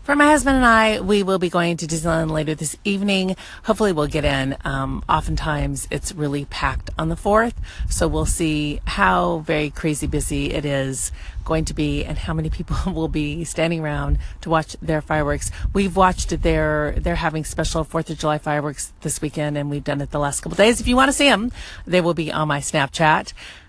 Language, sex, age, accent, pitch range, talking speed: English, female, 30-49, American, 150-200 Hz, 210 wpm